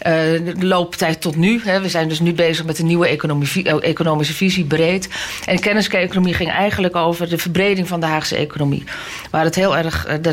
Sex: female